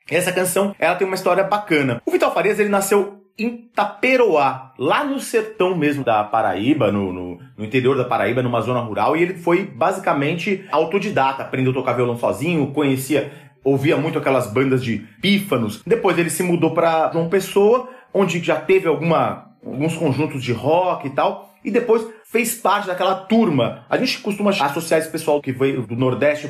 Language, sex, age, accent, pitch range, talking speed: Portuguese, male, 30-49, Brazilian, 135-200 Hz, 180 wpm